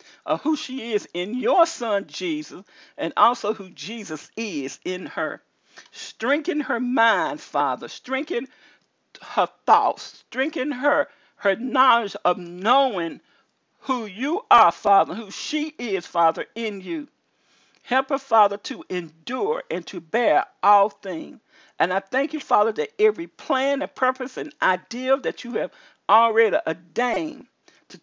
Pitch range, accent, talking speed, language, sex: 195-280 Hz, American, 145 wpm, English, male